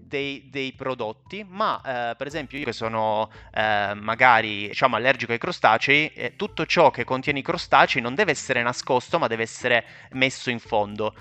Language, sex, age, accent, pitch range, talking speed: Italian, male, 30-49, native, 115-150 Hz, 175 wpm